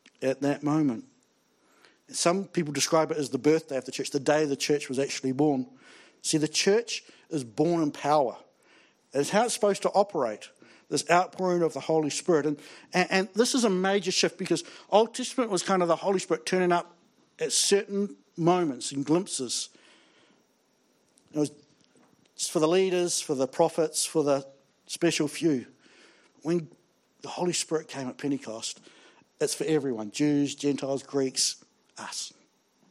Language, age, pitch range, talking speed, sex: English, 60-79, 145-190 Hz, 160 wpm, male